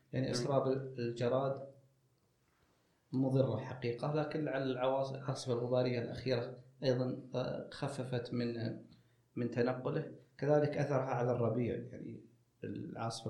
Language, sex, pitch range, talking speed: Arabic, male, 120-135 Hz, 90 wpm